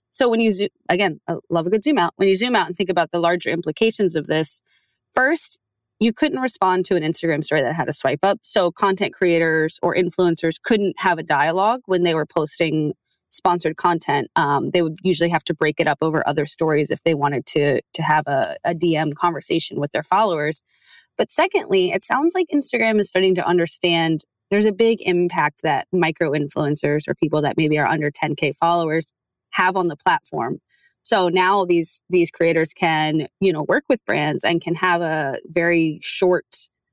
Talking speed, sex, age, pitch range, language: 195 wpm, female, 20-39, 160-185 Hz, English